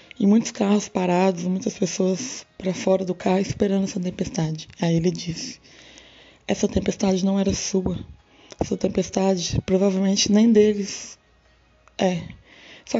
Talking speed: 130 wpm